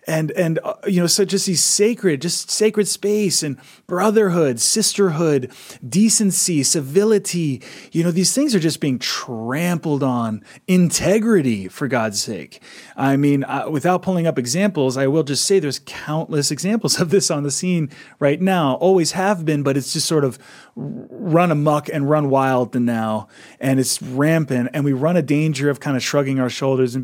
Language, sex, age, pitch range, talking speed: English, male, 30-49, 135-180 Hz, 180 wpm